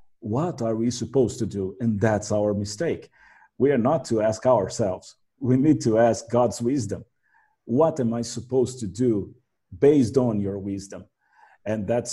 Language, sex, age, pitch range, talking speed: English, male, 40-59, 105-125 Hz, 170 wpm